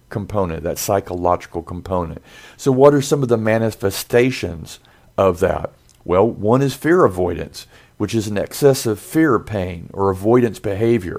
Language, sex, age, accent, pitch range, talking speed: English, male, 50-69, American, 100-125 Hz, 145 wpm